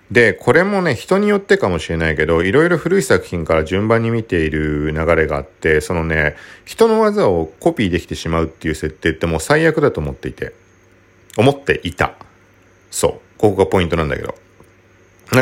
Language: Japanese